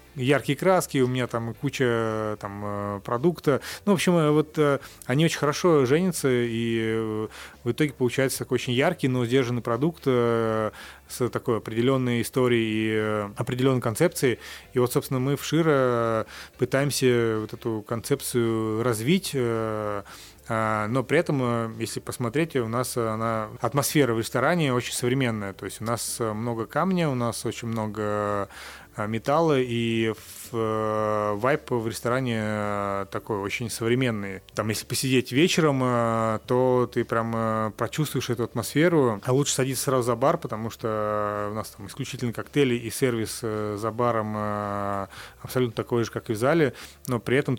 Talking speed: 140 wpm